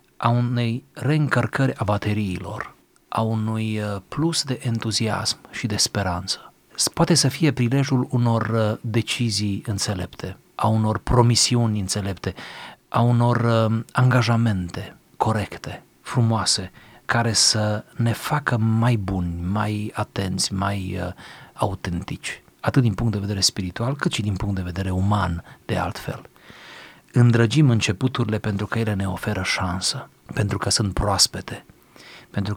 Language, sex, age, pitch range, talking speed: Romanian, male, 40-59, 100-115 Hz, 125 wpm